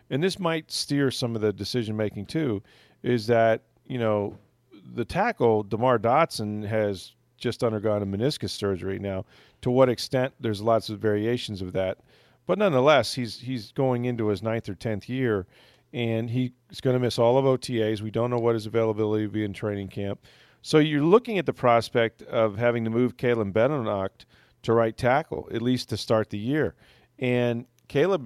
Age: 40-59